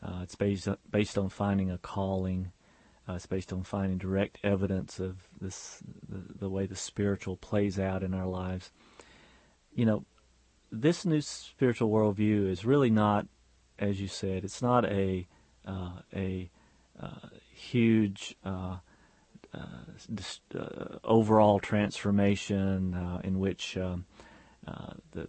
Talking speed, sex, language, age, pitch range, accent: 140 wpm, male, English, 40-59, 95-110 Hz, American